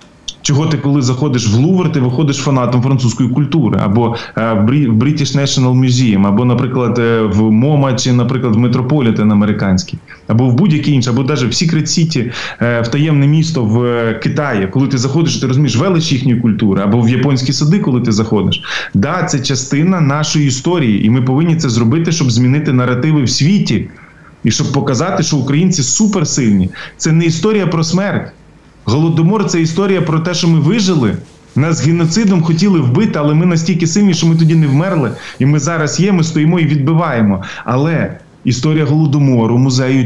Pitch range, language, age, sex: 125-160 Hz, Ukrainian, 20-39, male